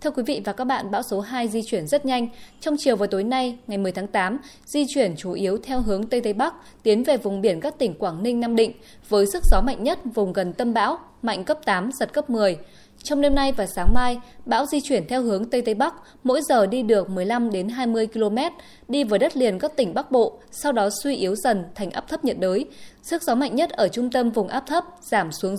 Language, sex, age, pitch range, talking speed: Vietnamese, female, 20-39, 205-260 Hz, 250 wpm